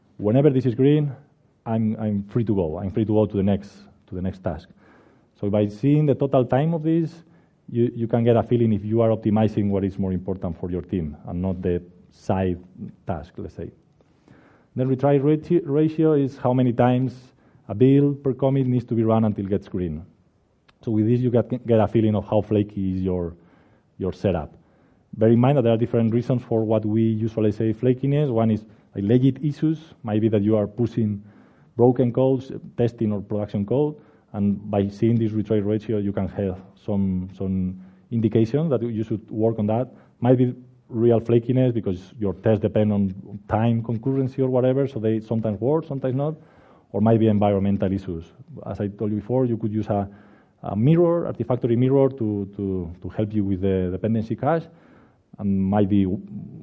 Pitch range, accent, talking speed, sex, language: 100-125 Hz, Spanish, 195 wpm, male, English